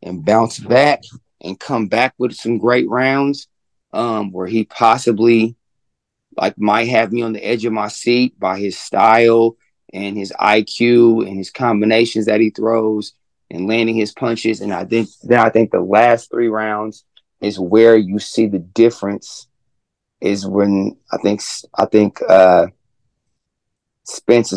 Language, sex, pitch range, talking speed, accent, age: English, male, 100-115 Hz, 155 wpm, American, 30-49